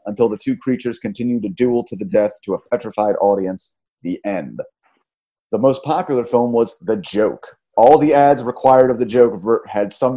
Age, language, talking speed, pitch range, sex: 30-49, English, 190 wpm, 105-130 Hz, male